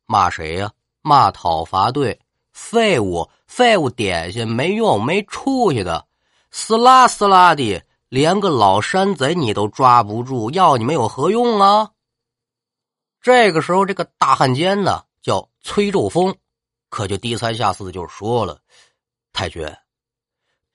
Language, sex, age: Chinese, male, 30-49